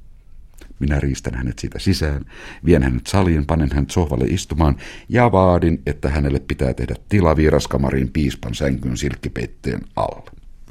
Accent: native